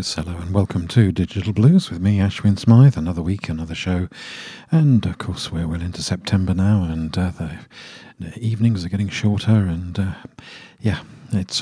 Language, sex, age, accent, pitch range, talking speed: English, male, 50-69, British, 90-110 Hz, 175 wpm